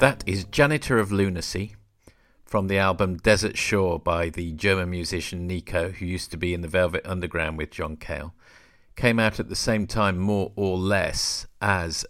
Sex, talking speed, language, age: male, 180 wpm, English, 50-69